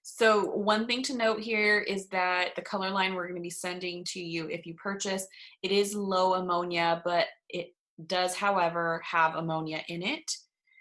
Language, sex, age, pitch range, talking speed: English, female, 20-39, 165-195 Hz, 185 wpm